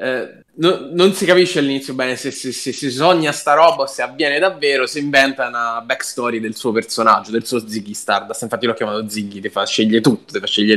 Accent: native